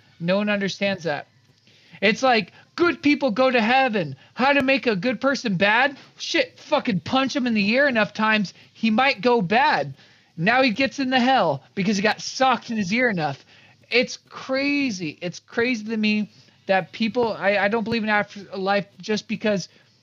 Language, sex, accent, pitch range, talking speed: English, male, American, 185-235 Hz, 185 wpm